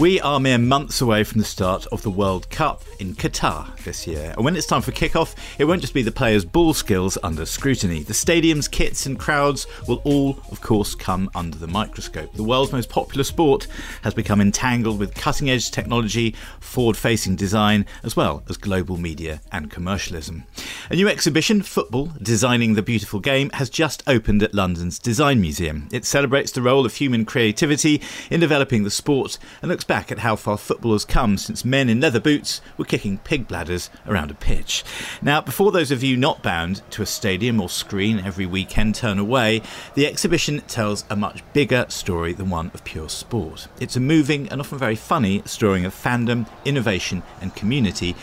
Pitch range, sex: 95-135 Hz, male